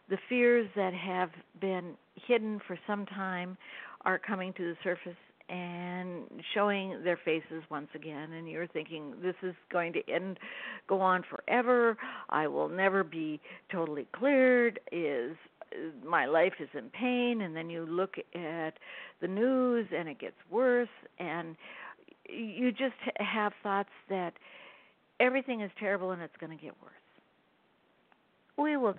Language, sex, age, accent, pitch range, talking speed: English, female, 60-79, American, 170-230 Hz, 150 wpm